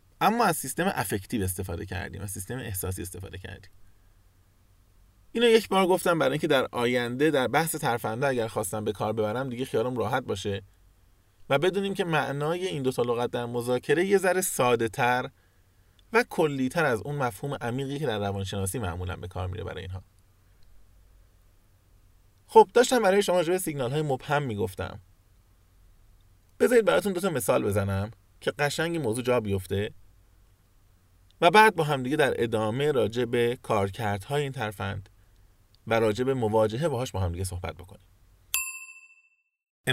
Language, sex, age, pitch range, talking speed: Persian, male, 20-39, 95-135 Hz, 150 wpm